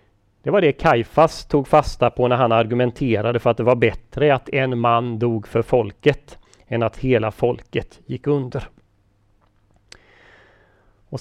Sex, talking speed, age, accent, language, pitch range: male, 150 wpm, 30-49, native, Swedish, 110-140 Hz